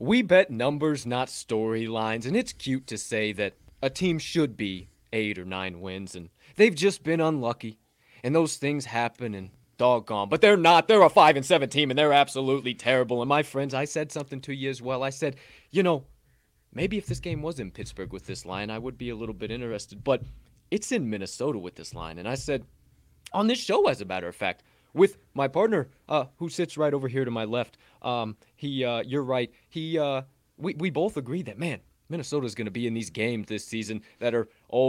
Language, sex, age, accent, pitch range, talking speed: English, male, 20-39, American, 110-145 Hz, 220 wpm